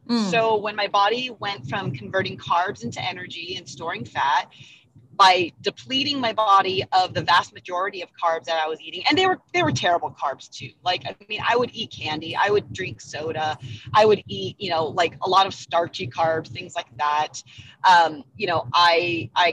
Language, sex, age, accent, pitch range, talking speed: English, female, 30-49, American, 145-210 Hz, 200 wpm